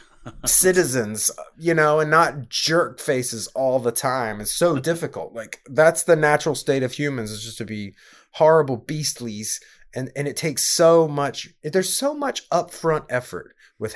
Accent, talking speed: American, 165 wpm